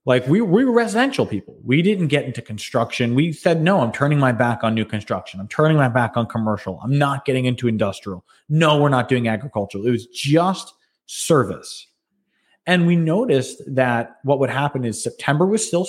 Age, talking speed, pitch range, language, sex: 20-39, 195 wpm, 115-155 Hz, English, male